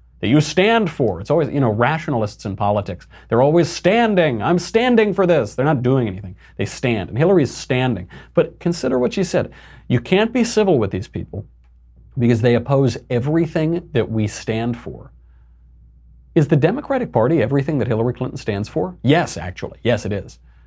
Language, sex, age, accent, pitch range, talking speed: English, male, 40-59, American, 105-150 Hz, 180 wpm